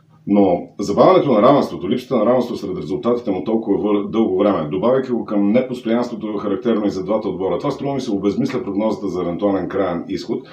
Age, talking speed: 40-59, 180 wpm